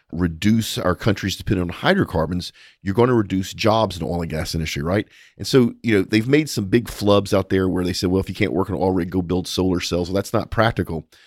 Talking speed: 255 wpm